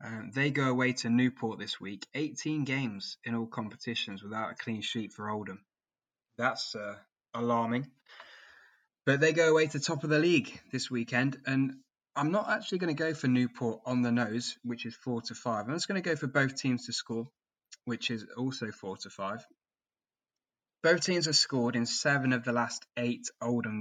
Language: English